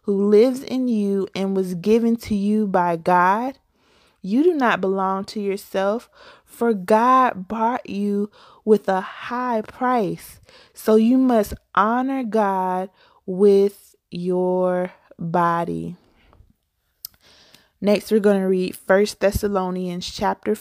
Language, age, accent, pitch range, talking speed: English, 20-39, American, 185-215 Hz, 120 wpm